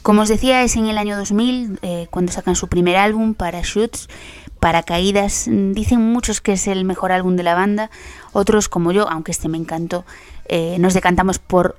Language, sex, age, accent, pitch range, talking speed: Spanish, female, 20-39, Spanish, 175-205 Hz, 200 wpm